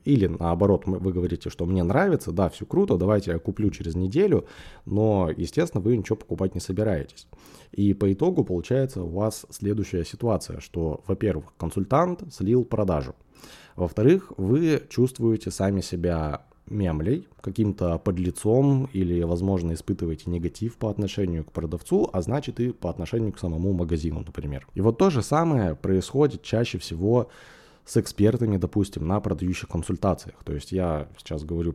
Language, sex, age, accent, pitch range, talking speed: Russian, male, 20-39, native, 85-115 Hz, 150 wpm